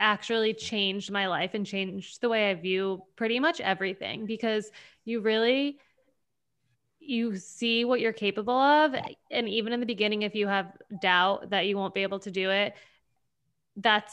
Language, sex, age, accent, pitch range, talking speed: English, female, 20-39, American, 190-220 Hz, 170 wpm